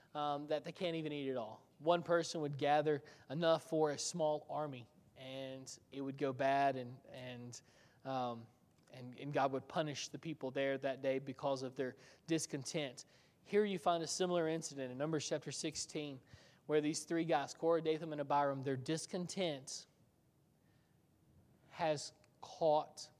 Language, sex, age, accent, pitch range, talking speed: English, male, 20-39, American, 135-170 Hz, 160 wpm